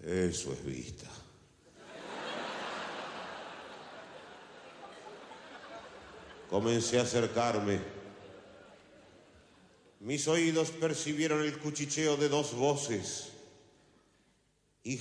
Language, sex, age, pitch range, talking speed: Spanish, male, 70-89, 115-155 Hz, 60 wpm